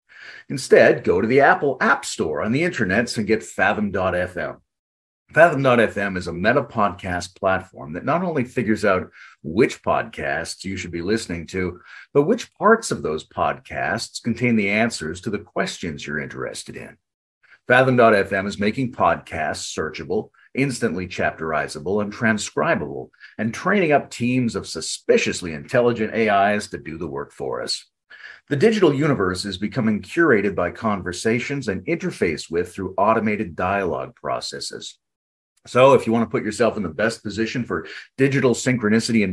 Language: English